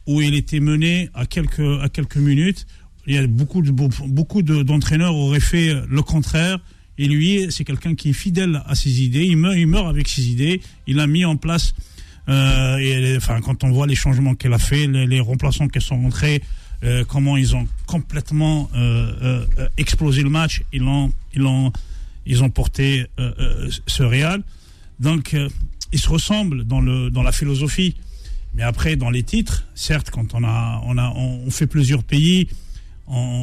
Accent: French